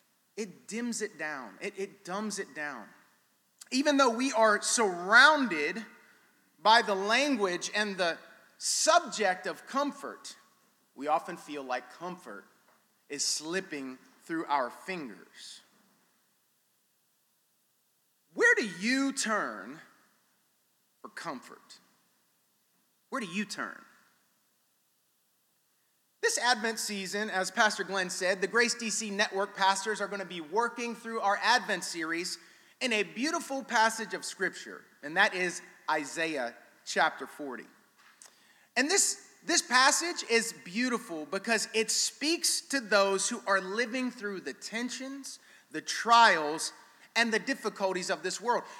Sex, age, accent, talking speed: male, 30-49, American, 120 wpm